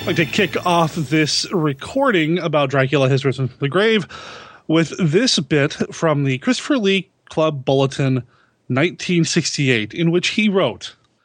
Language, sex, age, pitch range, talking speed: English, male, 30-49, 140-185 Hz, 155 wpm